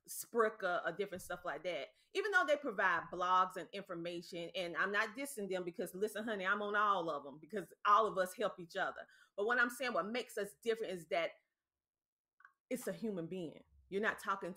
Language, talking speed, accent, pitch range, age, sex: English, 205 wpm, American, 180-245 Hz, 30-49, female